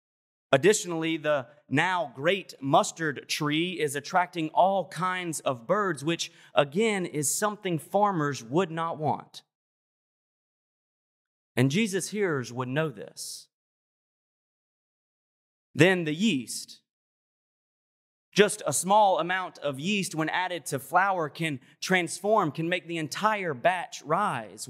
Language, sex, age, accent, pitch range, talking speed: English, male, 30-49, American, 145-180 Hz, 115 wpm